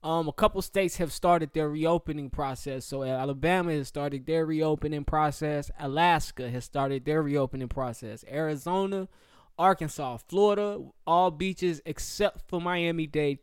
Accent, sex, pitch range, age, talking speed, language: American, male, 140-175 Hz, 20-39, 135 wpm, English